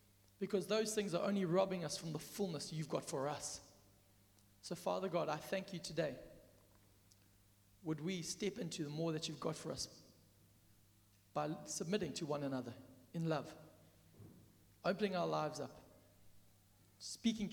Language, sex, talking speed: English, male, 150 wpm